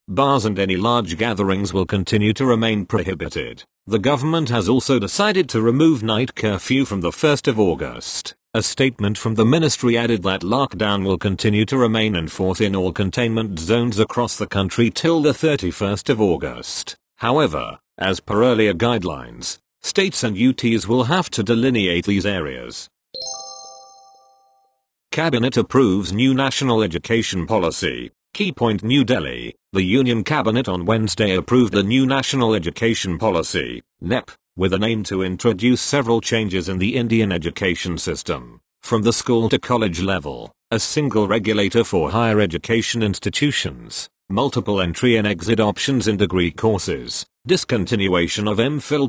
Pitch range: 100-130 Hz